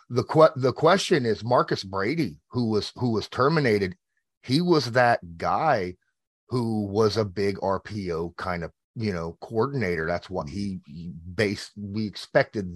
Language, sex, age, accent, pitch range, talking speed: English, male, 30-49, American, 95-115 Hz, 155 wpm